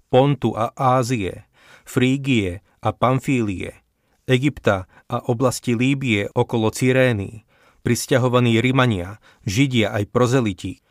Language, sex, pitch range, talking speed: Slovak, male, 105-125 Hz, 95 wpm